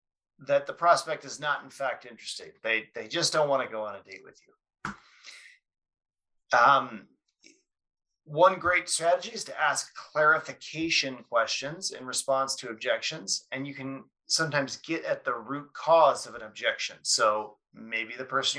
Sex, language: male, English